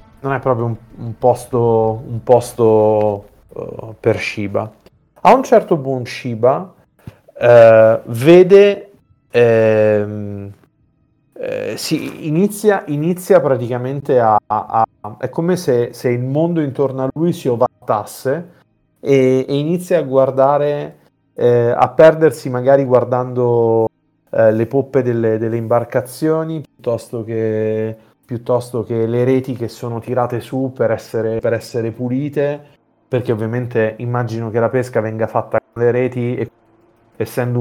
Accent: native